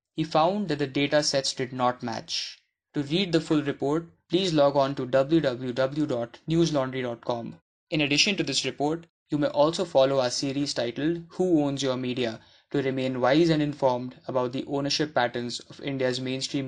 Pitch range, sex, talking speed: 130-160 Hz, male, 170 wpm